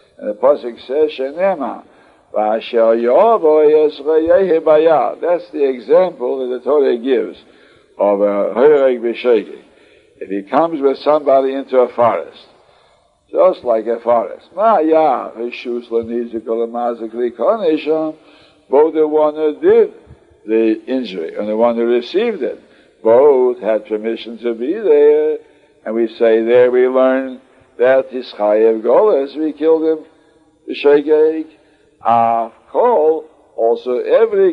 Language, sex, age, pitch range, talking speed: English, male, 60-79, 115-160 Hz, 115 wpm